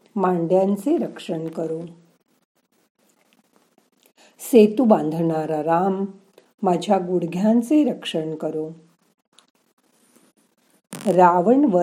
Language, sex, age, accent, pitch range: Marathi, female, 50-69, native, 170-225 Hz